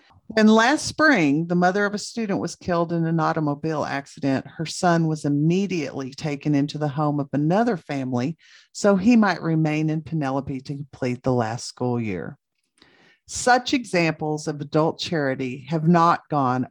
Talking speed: 160 wpm